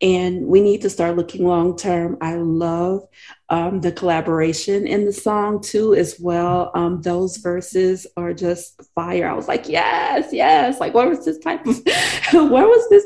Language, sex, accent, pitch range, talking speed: English, female, American, 180-275 Hz, 180 wpm